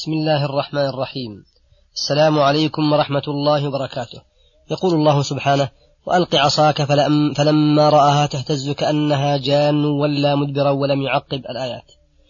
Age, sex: 30-49, female